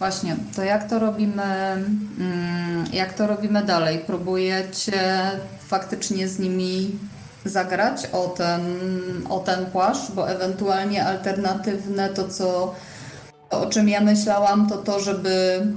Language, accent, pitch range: Polish, native, 180-205 Hz